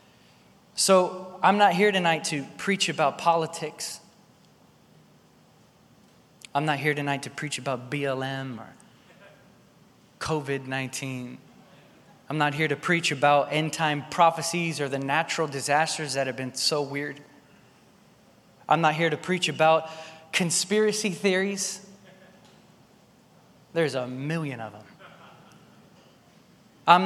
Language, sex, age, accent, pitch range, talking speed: English, male, 20-39, American, 155-200 Hz, 115 wpm